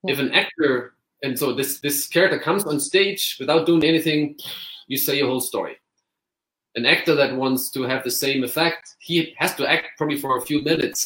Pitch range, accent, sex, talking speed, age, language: 120-145 Hz, German, male, 200 wpm, 30-49, English